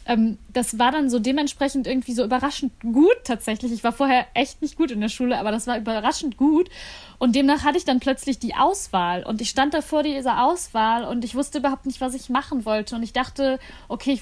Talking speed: 225 wpm